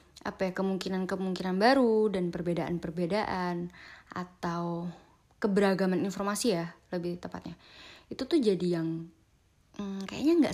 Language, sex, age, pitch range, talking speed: Indonesian, female, 20-39, 175-215 Hz, 110 wpm